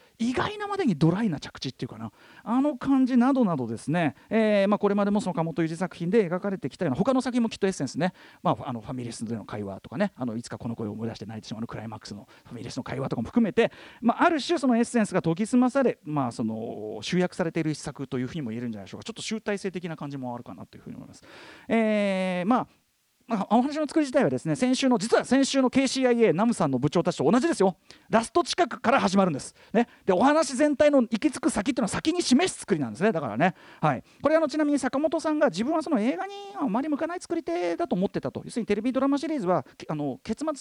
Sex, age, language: male, 40-59, Japanese